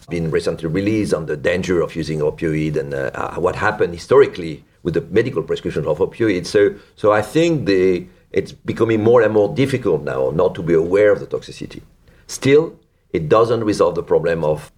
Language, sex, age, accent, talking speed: English, male, 50-69, French, 190 wpm